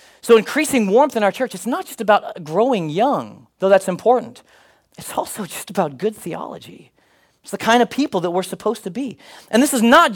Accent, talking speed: American, 205 wpm